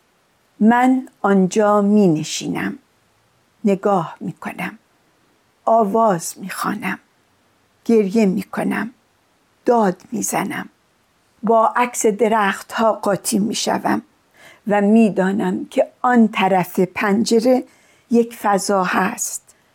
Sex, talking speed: female, 75 wpm